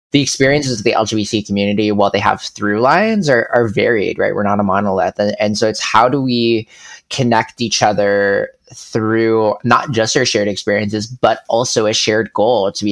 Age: 20-39